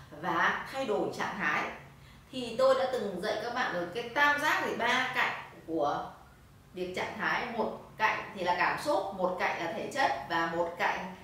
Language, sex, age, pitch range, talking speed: Vietnamese, female, 20-39, 190-280 Hz, 200 wpm